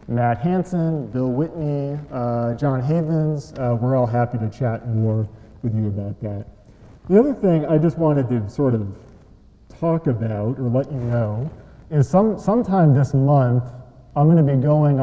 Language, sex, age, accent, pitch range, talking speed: English, male, 40-59, American, 115-155 Hz, 170 wpm